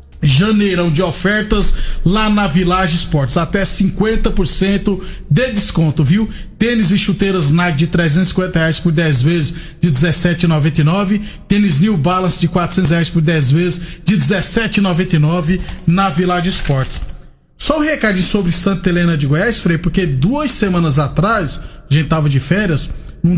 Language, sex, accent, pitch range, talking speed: Portuguese, male, Brazilian, 165-200 Hz, 145 wpm